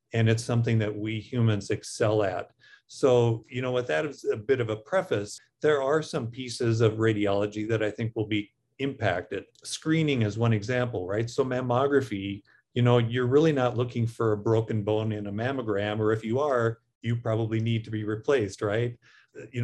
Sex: male